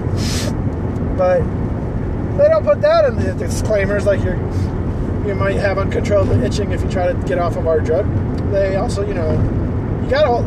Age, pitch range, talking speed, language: 20-39, 95-115 Hz, 180 wpm, English